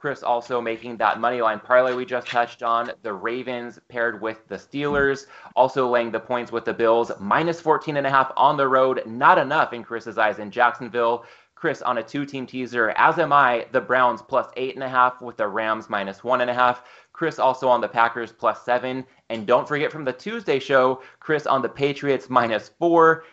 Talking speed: 210 wpm